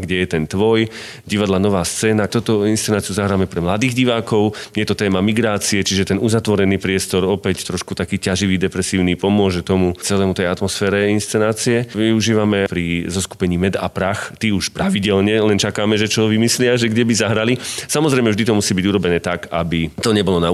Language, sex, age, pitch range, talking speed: Slovak, male, 40-59, 90-105 Hz, 180 wpm